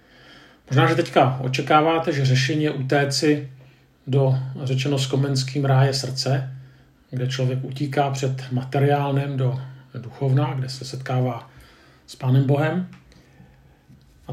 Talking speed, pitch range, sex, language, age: 110 wpm, 130-140 Hz, male, Czech, 40-59